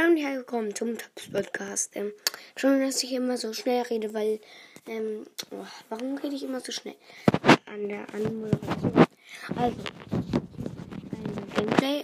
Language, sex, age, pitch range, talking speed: German, female, 20-39, 210-250 Hz, 135 wpm